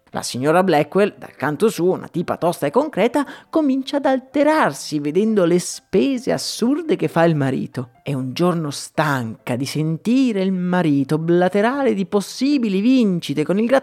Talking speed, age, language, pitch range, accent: 155 wpm, 30-49, Italian, 145-235 Hz, native